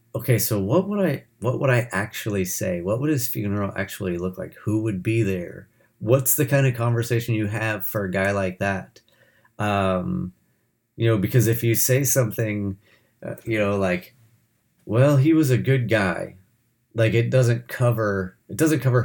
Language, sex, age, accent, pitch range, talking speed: English, male, 30-49, American, 100-125 Hz, 185 wpm